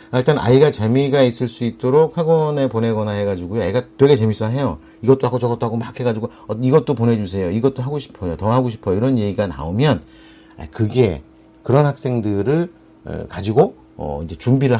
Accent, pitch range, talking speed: Korean, 100-135 Hz, 150 wpm